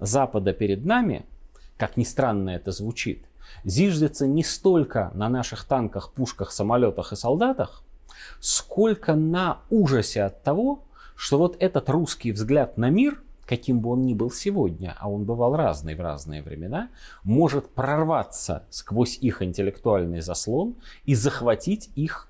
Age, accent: 30-49, native